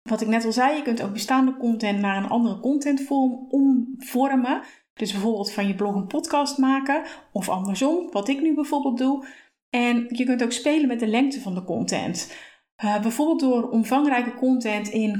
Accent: Dutch